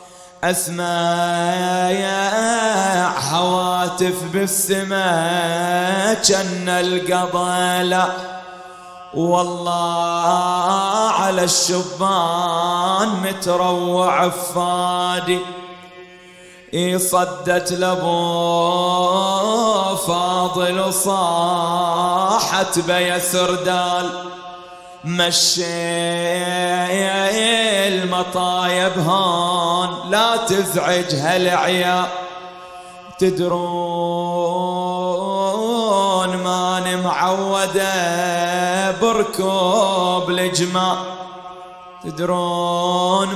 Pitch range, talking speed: 180-185 Hz, 40 wpm